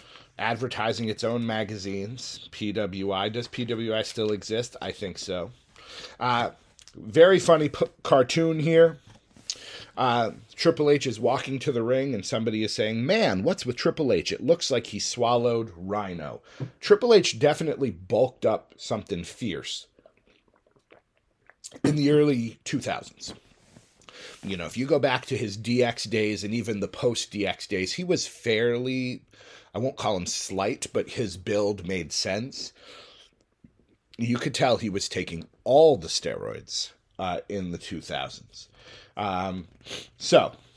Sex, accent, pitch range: male, American, 105-140 Hz